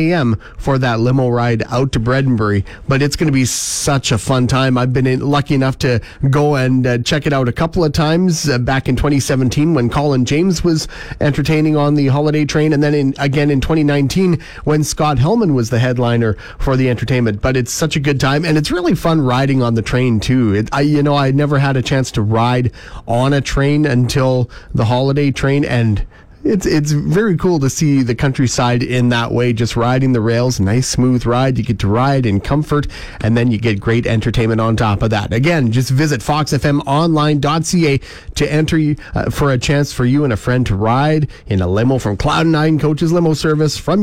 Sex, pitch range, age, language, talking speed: male, 120-150 Hz, 40-59, English, 205 wpm